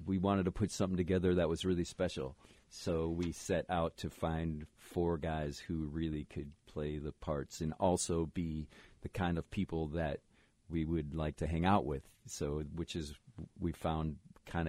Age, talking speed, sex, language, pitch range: 40-59, 185 wpm, male, English, 80-100 Hz